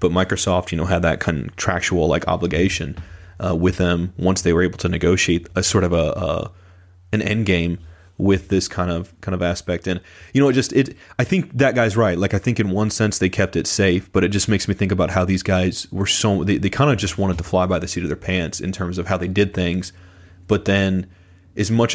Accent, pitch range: American, 90-100 Hz